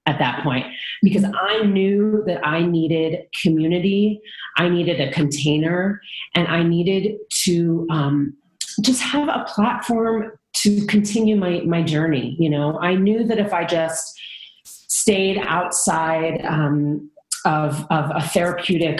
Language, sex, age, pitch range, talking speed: English, female, 30-49, 150-190 Hz, 135 wpm